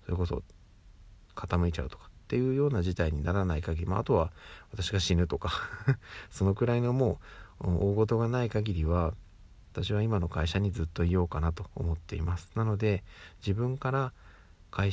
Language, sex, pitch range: Japanese, male, 85-105 Hz